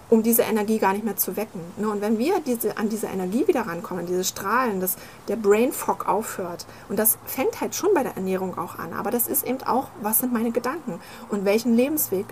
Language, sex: German, female